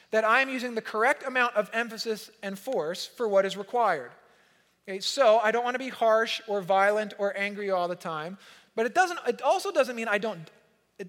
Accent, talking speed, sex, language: American, 215 wpm, male, English